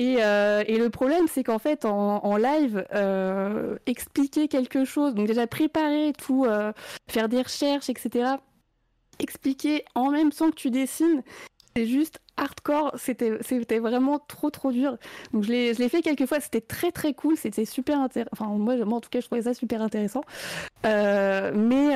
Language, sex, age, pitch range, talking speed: French, female, 20-39, 210-265 Hz, 175 wpm